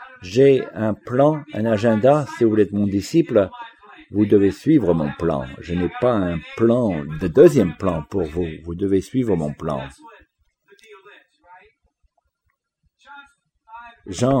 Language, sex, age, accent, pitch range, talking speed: English, male, 50-69, French, 100-130 Hz, 135 wpm